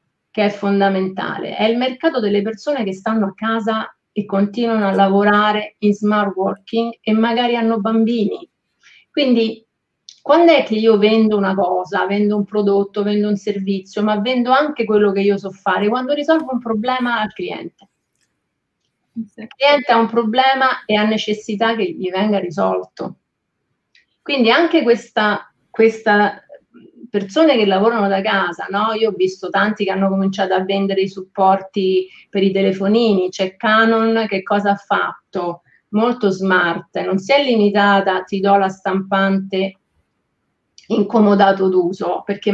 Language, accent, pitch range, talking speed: Italian, native, 195-225 Hz, 150 wpm